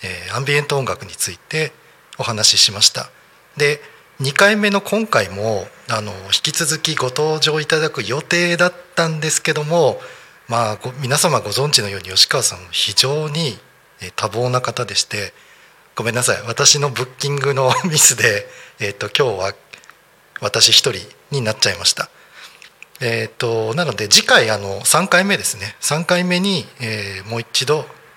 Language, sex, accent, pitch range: Japanese, male, native, 110-155 Hz